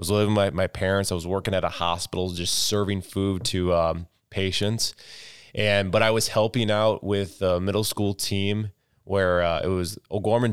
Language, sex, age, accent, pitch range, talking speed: English, male, 20-39, American, 90-100 Hz, 195 wpm